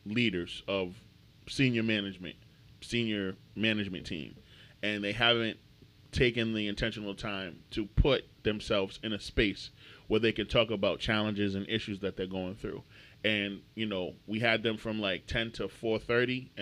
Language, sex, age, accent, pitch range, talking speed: English, male, 20-39, American, 100-120 Hz, 155 wpm